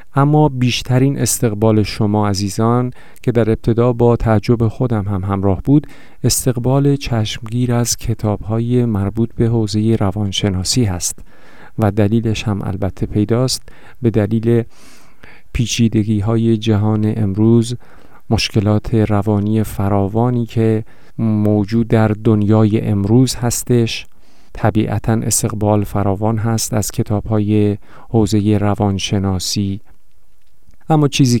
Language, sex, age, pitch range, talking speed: Persian, male, 50-69, 105-120 Hz, 100 wpm